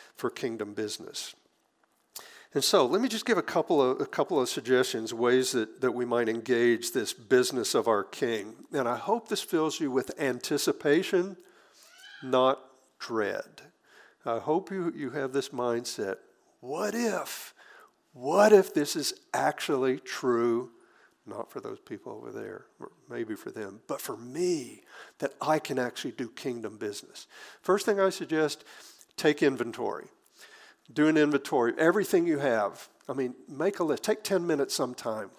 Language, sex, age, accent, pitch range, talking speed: English, male, 50-69, American, 125-185 Hz, 160 wpm